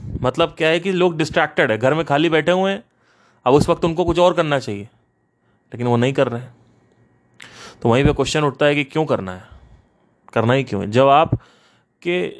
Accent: native